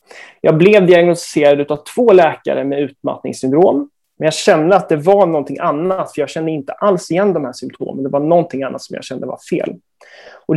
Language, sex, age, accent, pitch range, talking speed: Swedish, male, 30-49, native, 140-175 Hz, 200 wpm